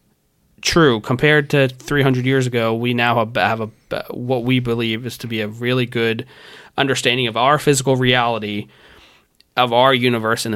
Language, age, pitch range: English, 20-39, 110-130 Hz